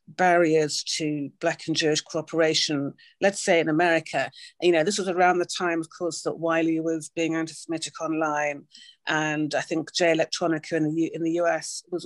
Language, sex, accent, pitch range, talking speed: English, female, British, 155-180 Hz, 170 wpm